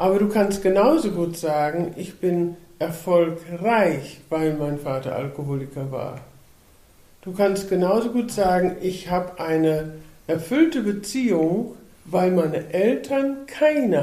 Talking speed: 120 wpm